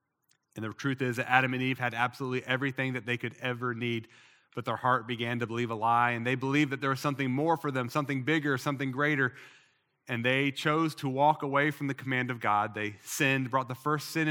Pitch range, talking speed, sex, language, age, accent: 125-155 Hz, 230 wpm, male, English, 30-49, American